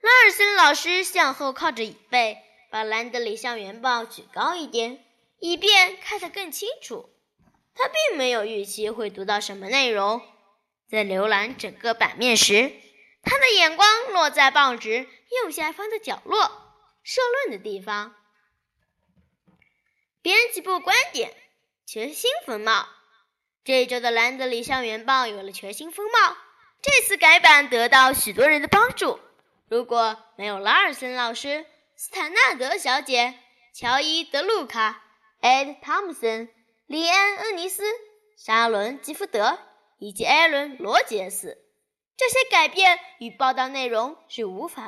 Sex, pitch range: female, 225-370 Hz